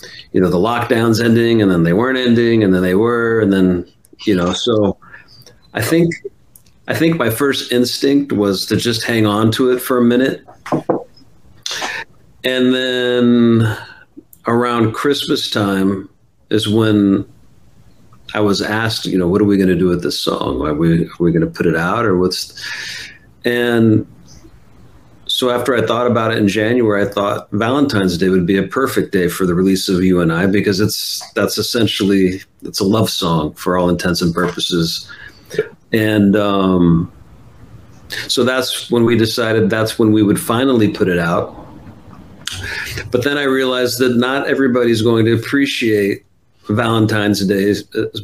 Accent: American